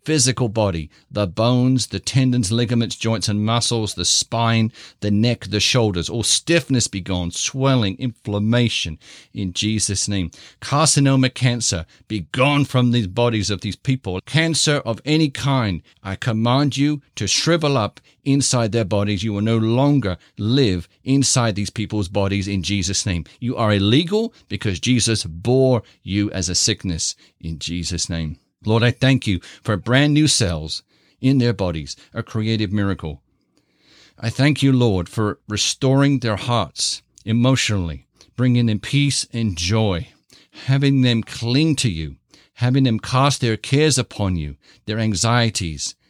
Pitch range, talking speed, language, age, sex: 100-125 Hz, 150 wpm, English, 50-69, male